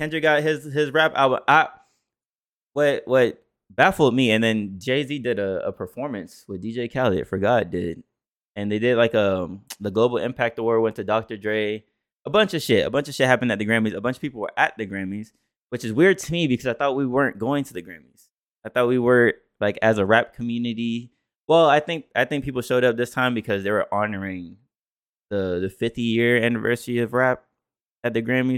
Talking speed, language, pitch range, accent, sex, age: 215 wpm, English, 100-125 Hz, American, male, 20-39